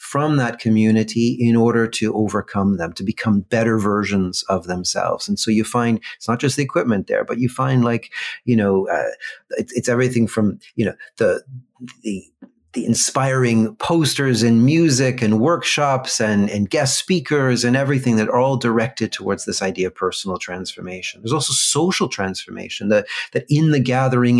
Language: English